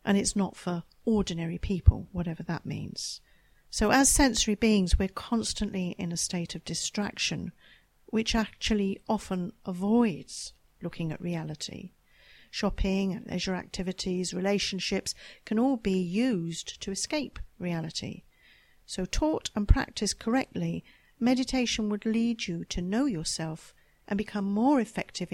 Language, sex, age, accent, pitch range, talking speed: English, female, 50-69, British, 175-210 Hz, 130 wpm